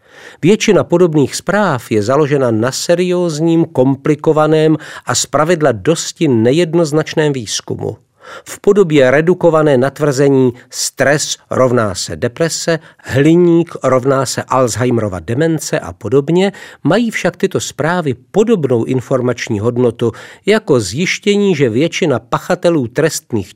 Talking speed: 105 wpm